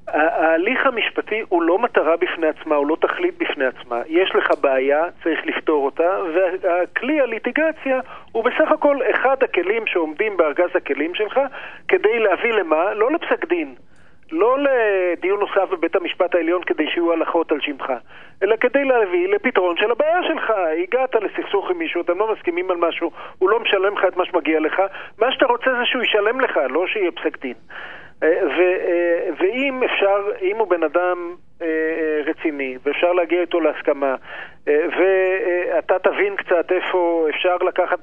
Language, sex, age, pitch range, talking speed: Hebrew, male, 40-59, 175-265 Hz, 155 wpm